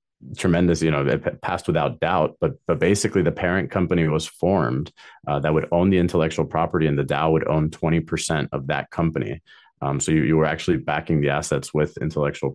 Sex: male